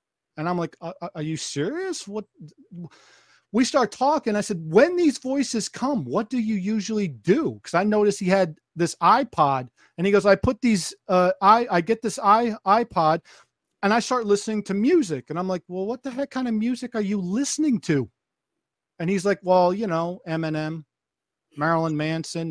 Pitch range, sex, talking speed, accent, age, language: 160-220 Hz, male, 185 wpm, American, 40-59, English